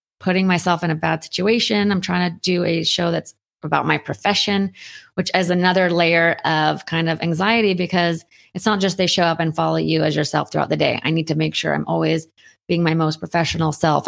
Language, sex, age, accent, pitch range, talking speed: English, female, 30-49, American, 160-185 Hz, 215 wpm